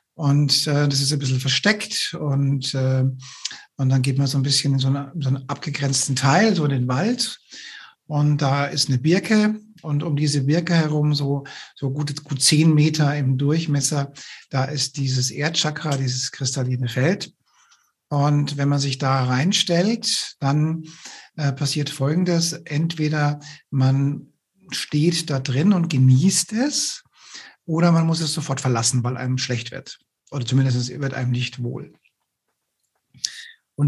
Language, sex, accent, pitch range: German, male, German, 130-155 Hz